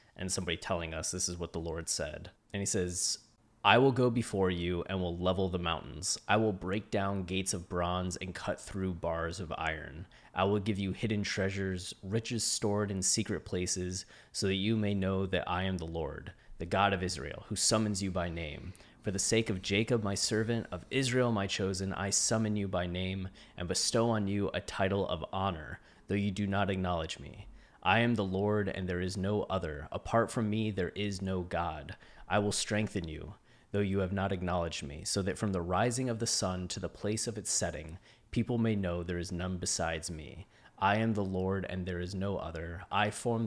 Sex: male